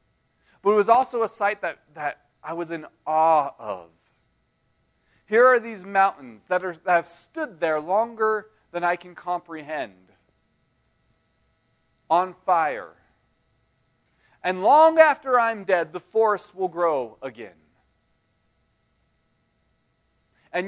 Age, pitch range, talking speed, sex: 40-59, 155-200 Hz, 115 wpm, male